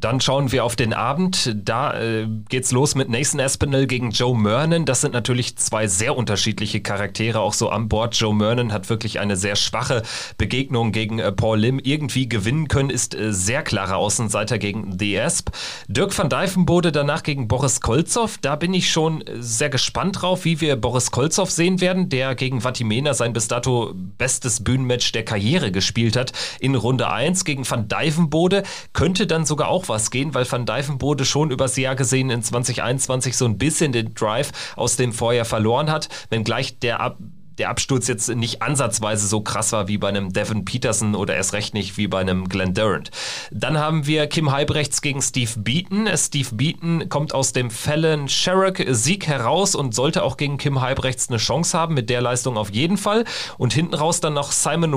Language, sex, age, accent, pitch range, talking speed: German, male, 30-49, German, 115-150 Hz, 195 wpm